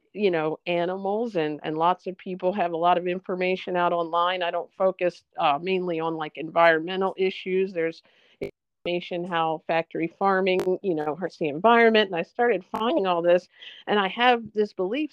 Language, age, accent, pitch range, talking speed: English, 50-69, American, 165-190 Hz, 180 wpm